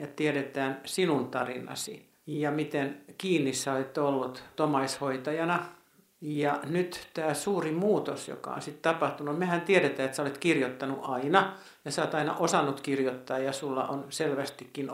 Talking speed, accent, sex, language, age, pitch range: 150 wpm, native, male, Finnish, 60-79, 140-175 Hz